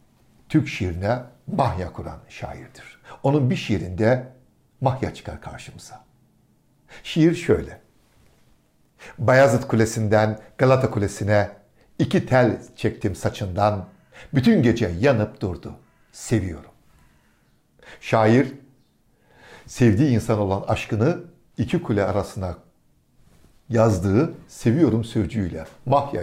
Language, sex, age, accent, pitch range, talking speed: Turkish, male, 60-79, native, 105-130 Hz, 85 wpm